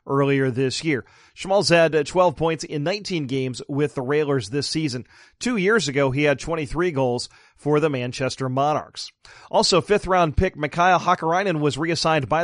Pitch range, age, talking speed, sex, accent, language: 140-175 Hz, 40-59, 165 wpm, male, American, English